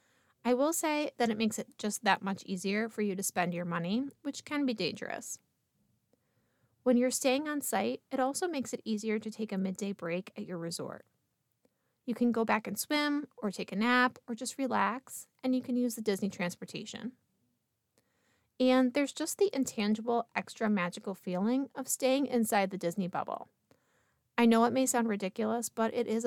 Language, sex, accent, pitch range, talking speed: English, female, American, 205-255 Hz, 185 wpm